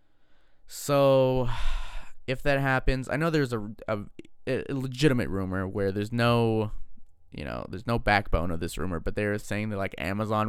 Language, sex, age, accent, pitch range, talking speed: English, male, 20-39, American, 95-140 Hz, 165 wpm